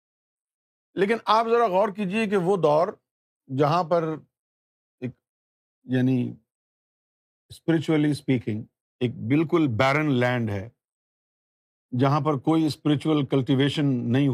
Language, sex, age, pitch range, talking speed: Urdu, male, 50-69, 125-160 Hz, 100 wpm